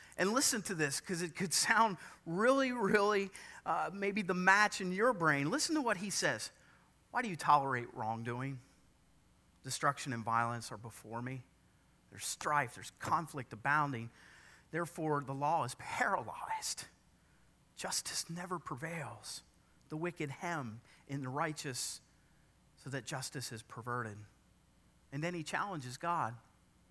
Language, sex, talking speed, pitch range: English, male, 140 wpm, 120-175 Hz